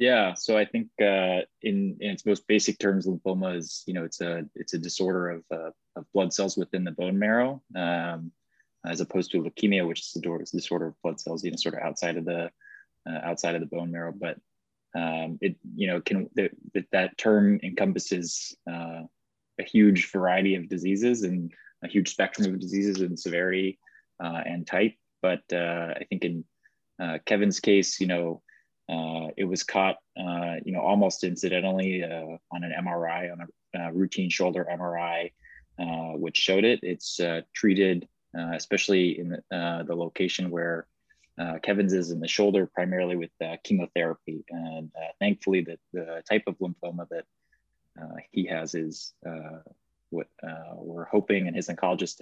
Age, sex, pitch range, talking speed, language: 20-39, male, 85-95 Hz, 180 wpm, English